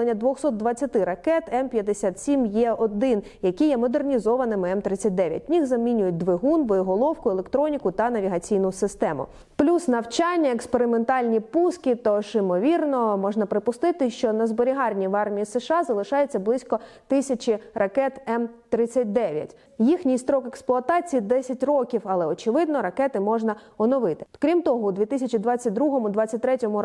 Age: 20-39